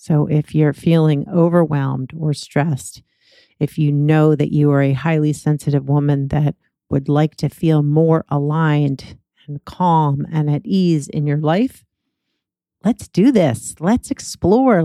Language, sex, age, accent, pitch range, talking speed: English, female, 40-59, American, 150-180 Hz, 150 wpm